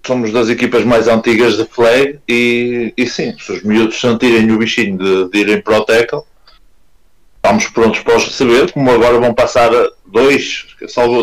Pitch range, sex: 110-125 Hz, male